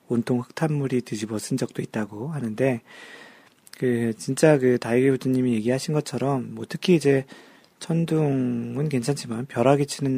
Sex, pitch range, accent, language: male, 115-145 Hz, native, Korean